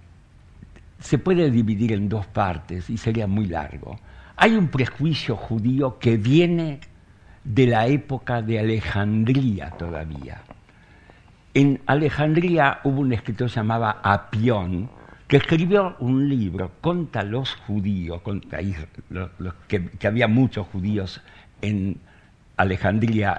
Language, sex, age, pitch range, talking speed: Spanish, male, 60-79, 100-125 Hz, 110 wpm